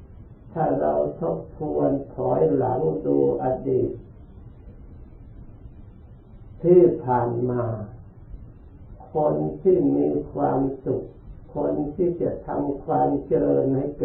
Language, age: Thai, 60-79